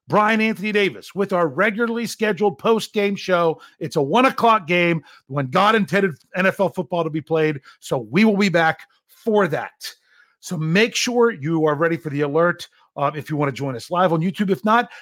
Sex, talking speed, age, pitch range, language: male, 205 wpm, 40-59, 160-220 Hz, English